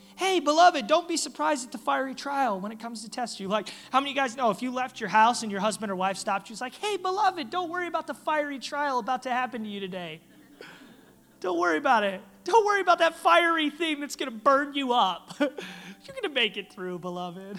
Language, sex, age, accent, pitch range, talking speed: English, male, 30-49, American, 175-235 Hz, 250 wpm